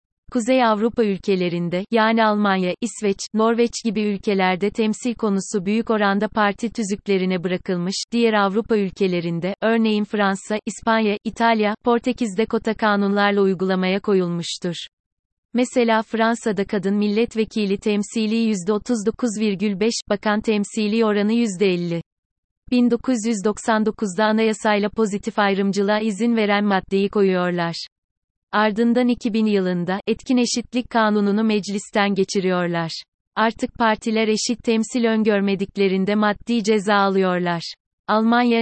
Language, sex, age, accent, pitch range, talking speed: Turkish, female, 30-49, native, 195-225 Hz, 100 wpm